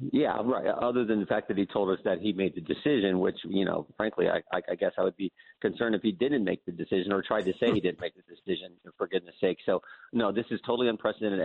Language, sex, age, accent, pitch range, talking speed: English, male, 40-59, American, 100-130 Hz, 260 wpm